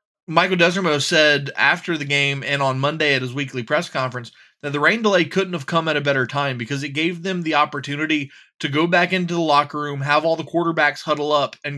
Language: English